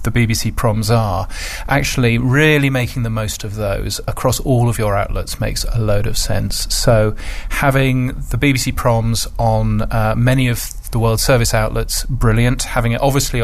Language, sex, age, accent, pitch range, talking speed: English, male, 30-49, British, 110-130 Hz, 170 wpm